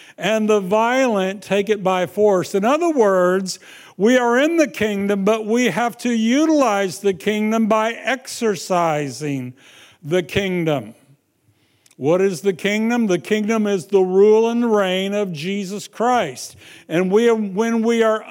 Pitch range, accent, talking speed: 195-255 Hz, American, 145 wpm